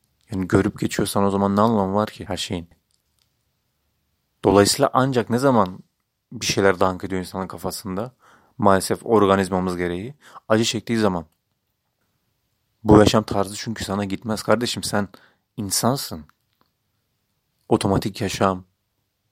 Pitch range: 95-110 Hz